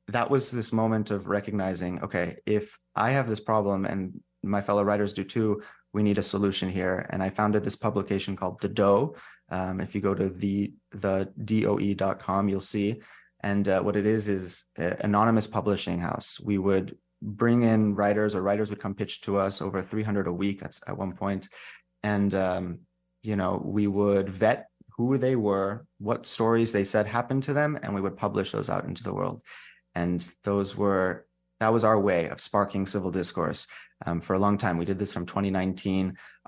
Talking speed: 190 wpm